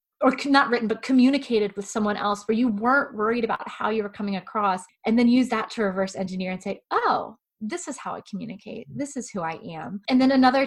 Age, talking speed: 20-39, 235 wpm